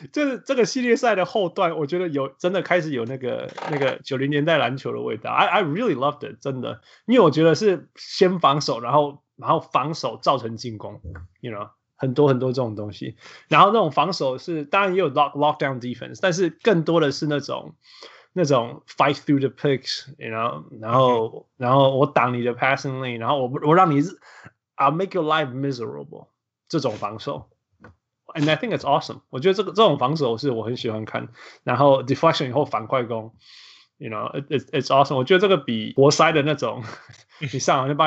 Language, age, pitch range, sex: Chinese, 20-39, 130-175 Hz, male